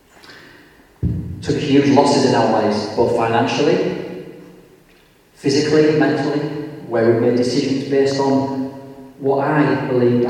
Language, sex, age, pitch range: English, male, 40-59, 115-140 Hz